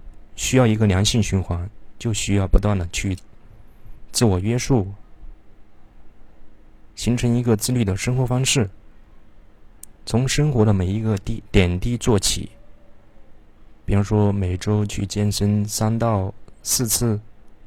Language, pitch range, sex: Chinese, 95-115 Hz, male